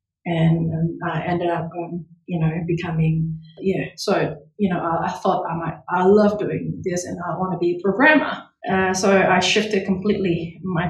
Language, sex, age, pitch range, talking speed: English, female, 20-39, 170-210 Hz, 195 wpm